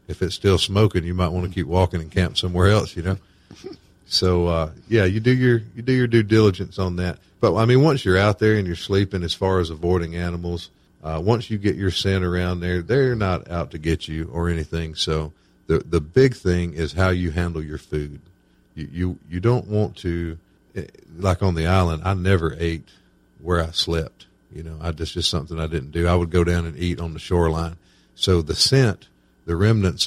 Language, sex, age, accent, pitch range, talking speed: English, male, 50-69, American, 80-95 Hz, 220 wpm